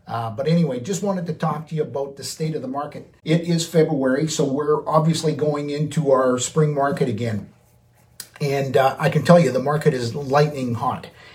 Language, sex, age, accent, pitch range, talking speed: English, male, 50-69, American, 130-155 Hz, 200 wpm